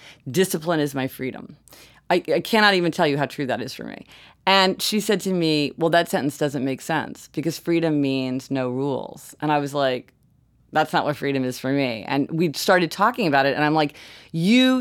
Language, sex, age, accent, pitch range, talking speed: English, female, 30-49, American, 140-175 Hz, 215 wpm